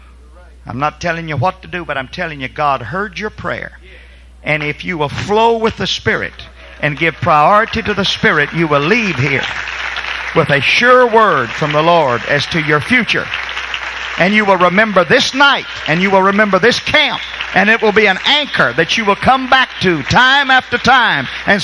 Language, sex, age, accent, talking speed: English, male, 50-69, American, 200 wpm